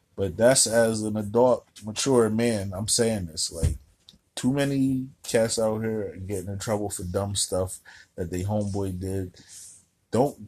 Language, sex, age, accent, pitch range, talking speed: English, male, 30-49, American, 95-110 Hz, 155 wpm